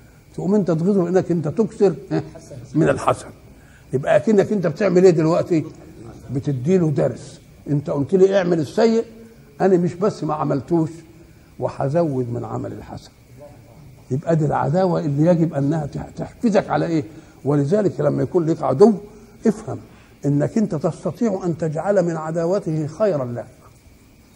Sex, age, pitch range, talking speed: male, 60-79, 135-185 Hz, 135 wpm